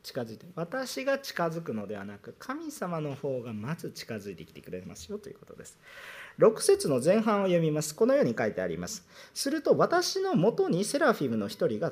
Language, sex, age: Japanese, male, 40-59